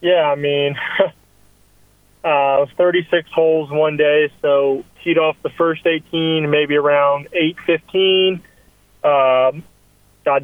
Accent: American